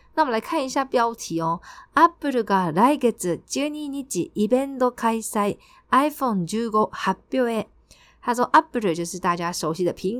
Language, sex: Chinese, female